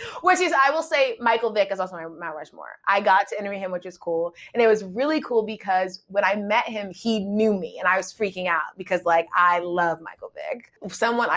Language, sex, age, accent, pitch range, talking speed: English, female, 20-39, American, 170-225 Hz, 235 wpm